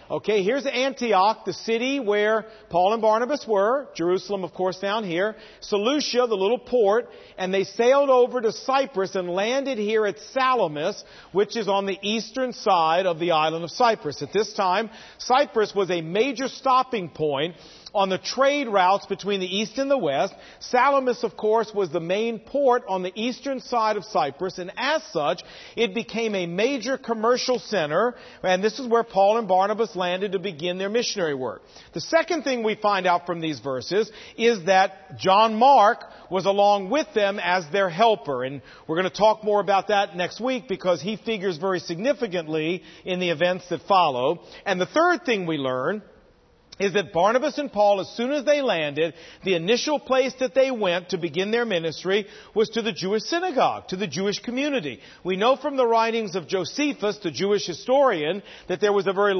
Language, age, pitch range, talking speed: English, 50-69, 185-245 Hz, 185 wpm